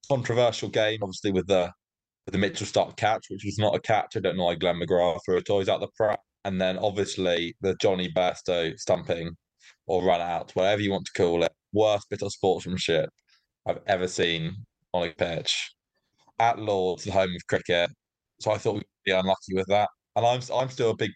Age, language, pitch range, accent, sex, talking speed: 20-39, English, 90-105 Hz, British, male, 205 wpm